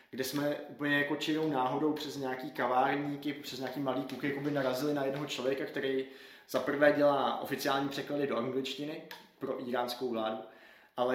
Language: Czech